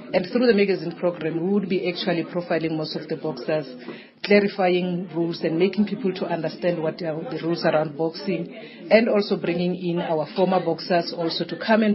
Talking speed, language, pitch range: 190 wpm, English, 165-195 Hz